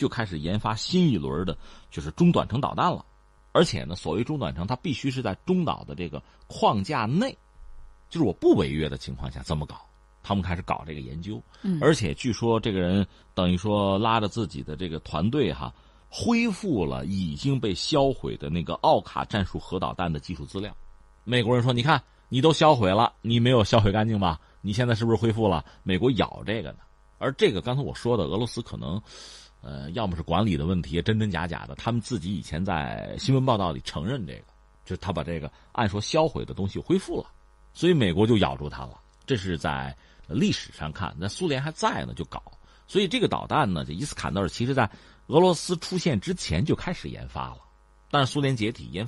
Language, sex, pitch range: Chinese, male, 85-125 Hz